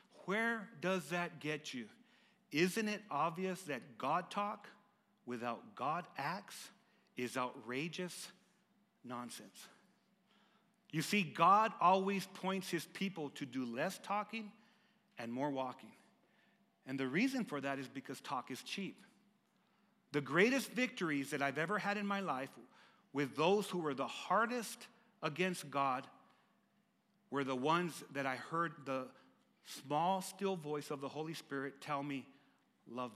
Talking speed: 140 wpm